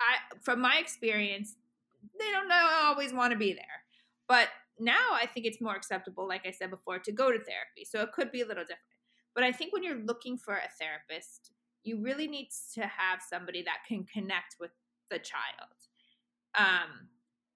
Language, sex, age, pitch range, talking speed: English, female, 30-49, 185-245 Hz, 185 wpm